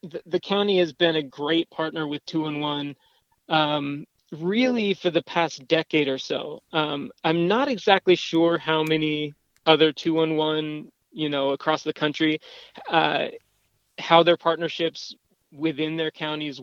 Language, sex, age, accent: English, male, 30-49, American